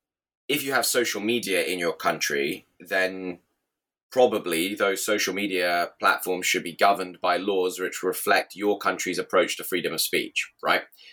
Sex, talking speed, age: male, 155 wpm, 20-39